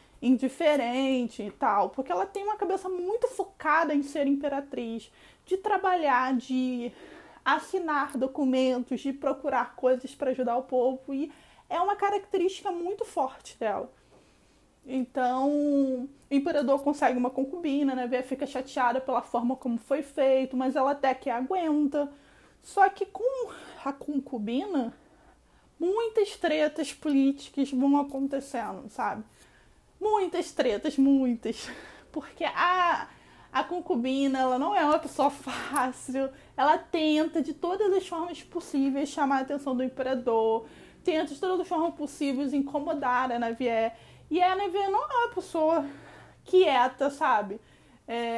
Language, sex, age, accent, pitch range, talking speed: Portuguese, female, 20-39, Brazilian, 255-345 Hz, 135 wpm